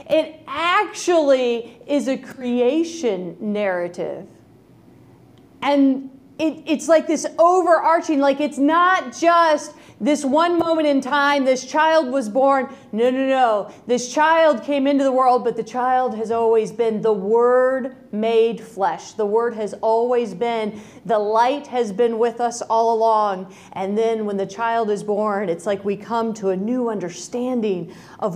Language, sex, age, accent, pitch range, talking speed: English, female, 40-59, American, 225-290 Hz, 150 wpm